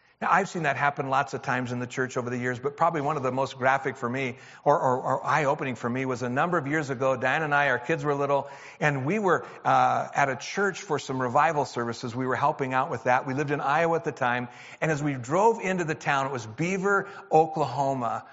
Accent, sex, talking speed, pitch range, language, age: American, male, 250 wpm, 130-165 Hz, Russian, 50-69